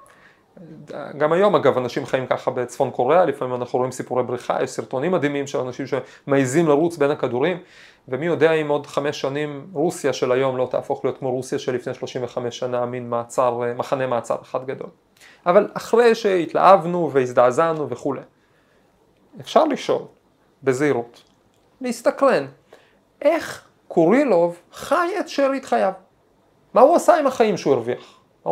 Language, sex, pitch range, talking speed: Hebrew, male, 135-220 Hz, 140 wpm